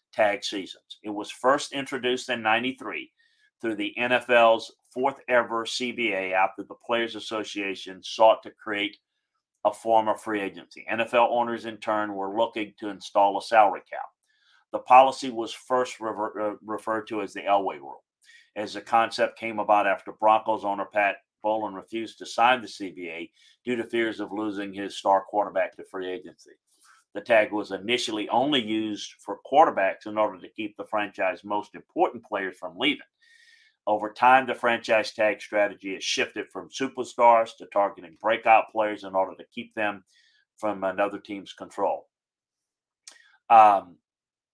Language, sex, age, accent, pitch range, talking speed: English, male, 50-69, American, 105-120 Hz, 155 wpm